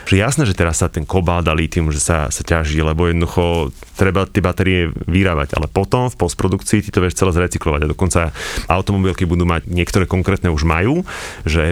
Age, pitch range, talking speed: 30-49, 85-100 Hz, 190 wpm